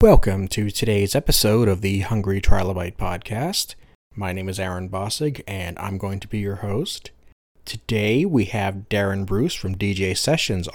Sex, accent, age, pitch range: male, American, 40-59, 100-130 Hz